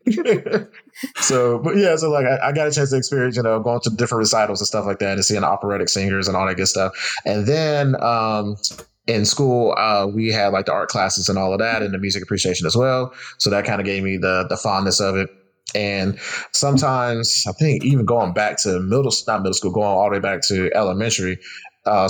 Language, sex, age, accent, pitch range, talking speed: English, male, 20-39, American, 95-120 Hz, 225 wpm